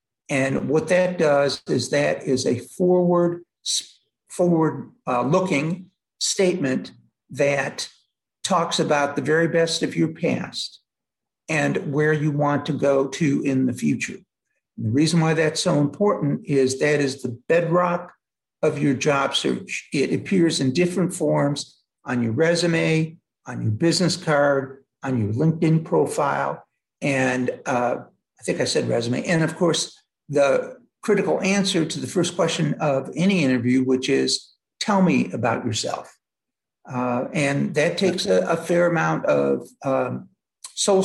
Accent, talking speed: American, 145 wpm